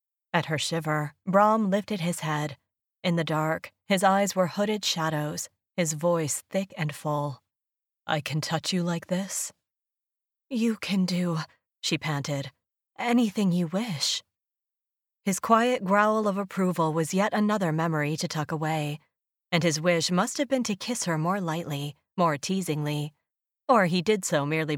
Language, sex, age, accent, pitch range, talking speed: English, female, 30-49, American, 155-195 Hz, 155 wpm